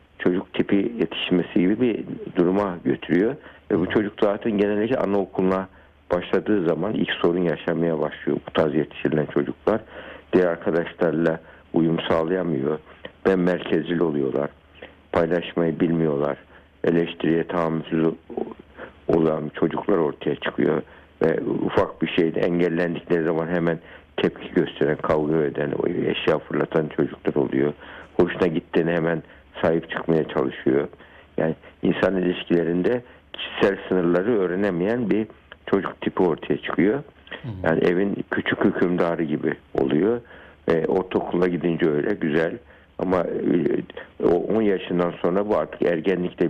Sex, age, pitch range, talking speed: male, 60-79, 80-90 Hz, 115 wpm